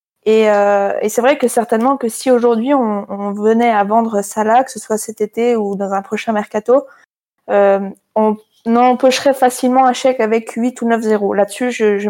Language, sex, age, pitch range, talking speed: French, female, 20-39, 220-255 Hz, 195 wpm